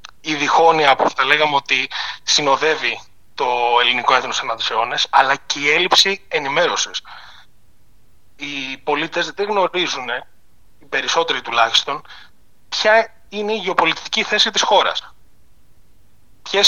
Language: Greek